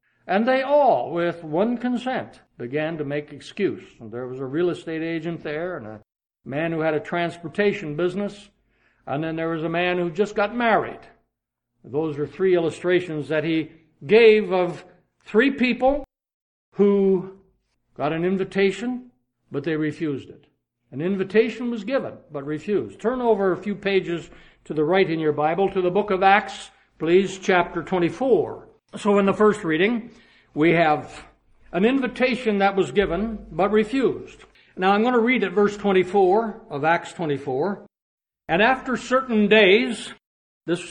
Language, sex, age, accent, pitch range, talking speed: English, male, 60-79, American, 165-220 Hz, 160 wpm